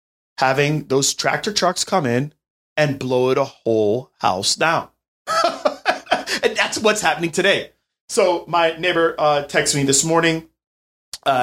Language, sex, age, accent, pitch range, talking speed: English, male, 30-49, American, 120-190 Hz, 140 wpm